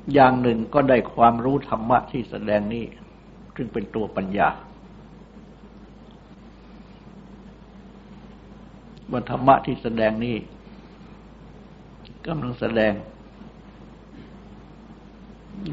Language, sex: Thai, male